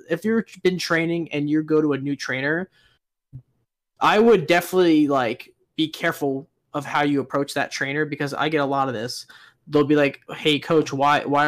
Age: 20-39